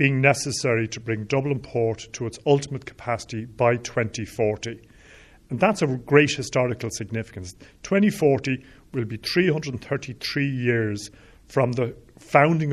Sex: male